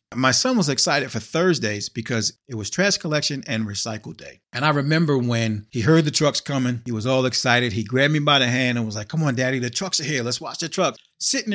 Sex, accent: male, American